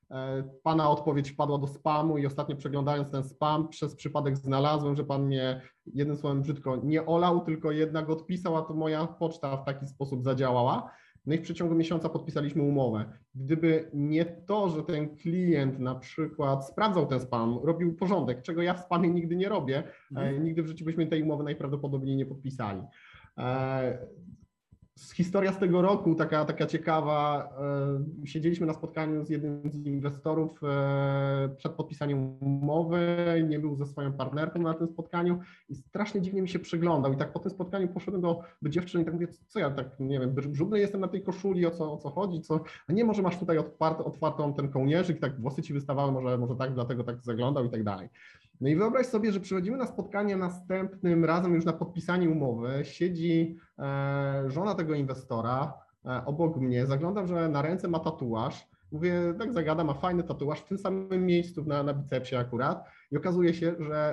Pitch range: 140-170 Hz